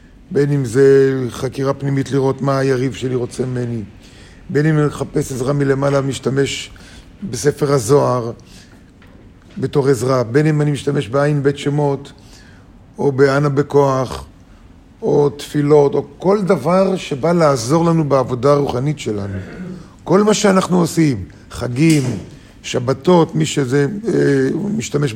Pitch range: 125-155 Hz